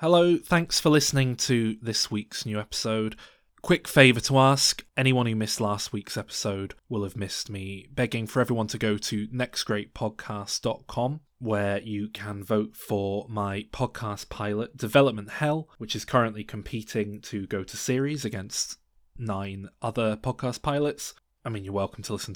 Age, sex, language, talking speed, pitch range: 20-39, male, English, 160 wpm, 100-125 Hz